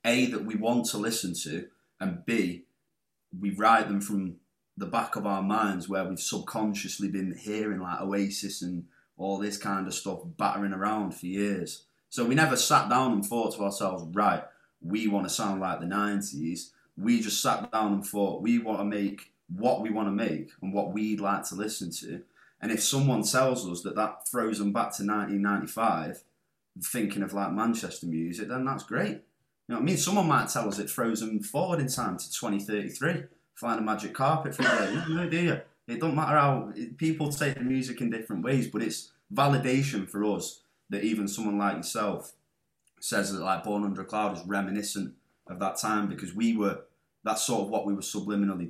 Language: English